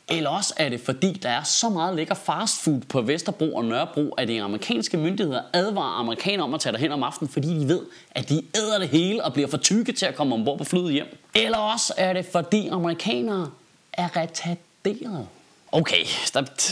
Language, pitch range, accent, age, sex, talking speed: Danish, 145-210 Hz, native, 30-49, male, 210 wpm